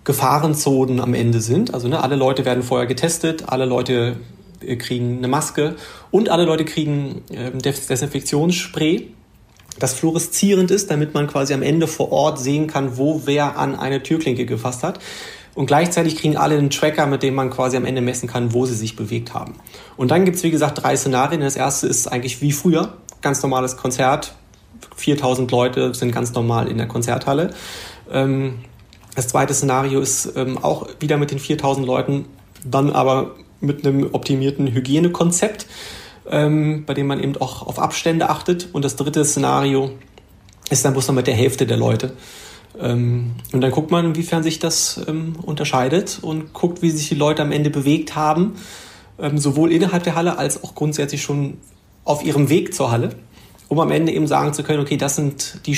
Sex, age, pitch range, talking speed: male, 30-49, 130-155 Hz, 180 wpm